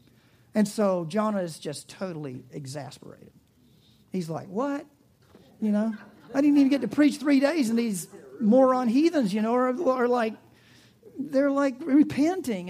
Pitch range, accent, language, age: 160-255 Hz, American, English, 50-69